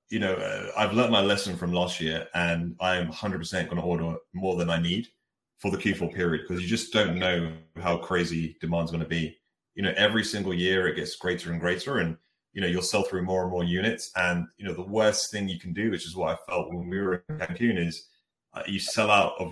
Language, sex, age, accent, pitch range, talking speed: English, male, 30-49, British, 85-100 Hz, 250 wpm